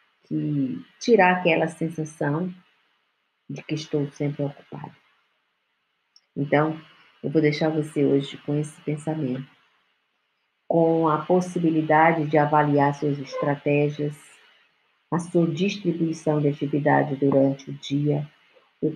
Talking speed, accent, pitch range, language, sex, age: 110 wpm, Brazilian, 140-160 Hz, Portuguese, female, 50-69